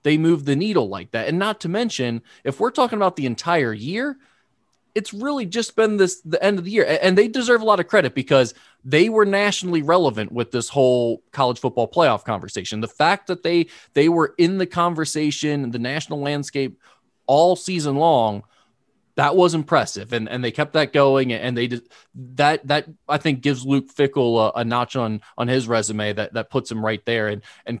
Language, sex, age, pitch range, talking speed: English, male, 20-39, 115-150 Hz, 205 wpm